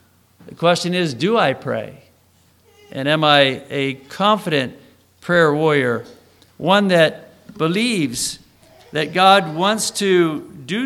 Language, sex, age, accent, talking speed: English, male, 50-69, American, 115 wpm